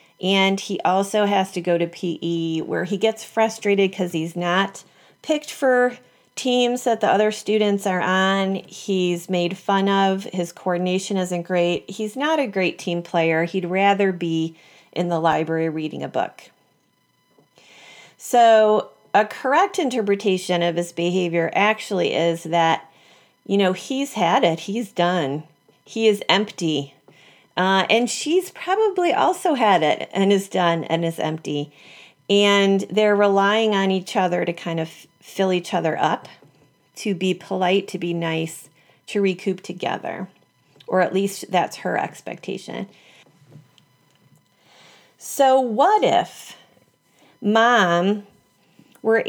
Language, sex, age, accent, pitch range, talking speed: English, female, 40-59, American, 175-215 Hz, 140 wpm